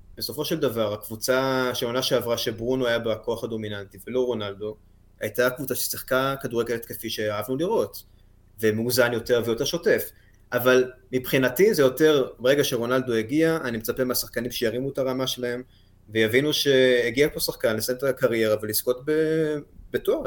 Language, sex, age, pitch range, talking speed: Hebrew, male, 20-39, 110-130 Hz, 140 wpm